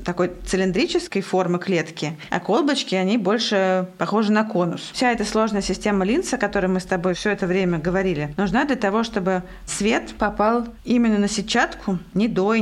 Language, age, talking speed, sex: Russian, 20-39, 175 wpm, female